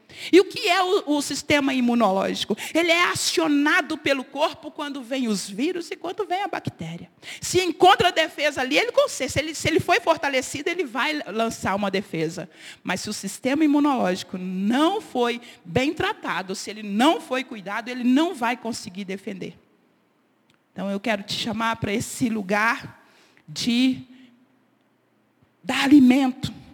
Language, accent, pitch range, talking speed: Portuguese, Brazilian, 230-325 Hz, 155 wpm